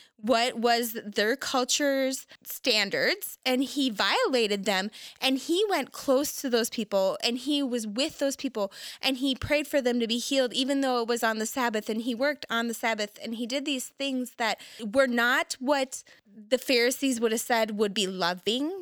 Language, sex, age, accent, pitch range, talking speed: English, female, 20-39, American, 210-260 Hz, 190 wpm